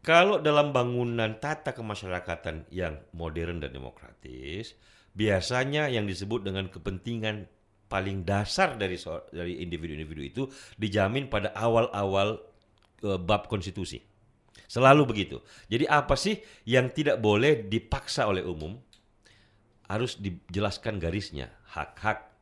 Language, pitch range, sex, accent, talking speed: Indonesian, 95-130 Hz, male, native, 110 wpm